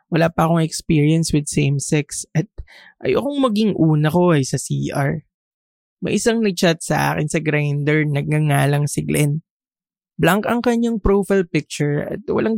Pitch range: 150-190 Hz